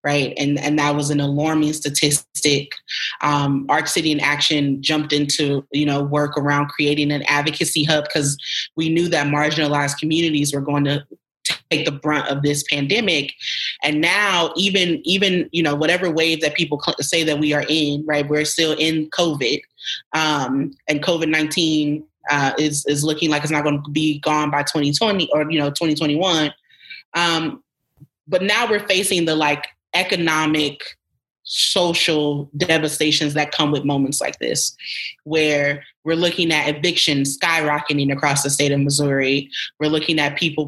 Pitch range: 145-160 Hz